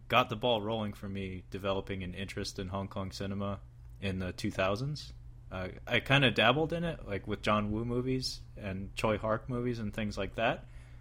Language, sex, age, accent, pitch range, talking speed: English, male, 30-49, American, 90-115 Hz, 190 wpm